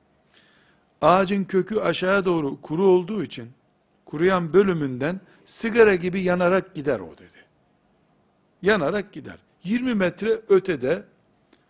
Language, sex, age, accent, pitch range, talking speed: Turkish, male, 60-79, native, 155-205 Hz, 105 wpm